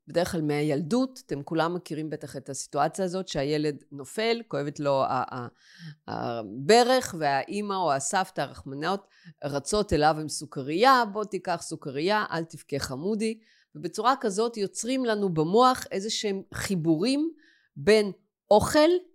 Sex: female